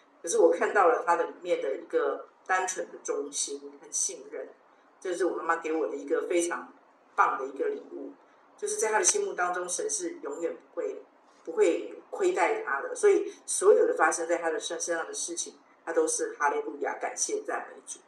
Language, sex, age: Chinese, female, 50-69